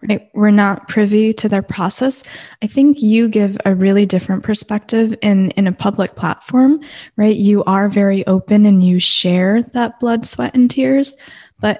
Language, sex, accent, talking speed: English, female, American, 175 wpm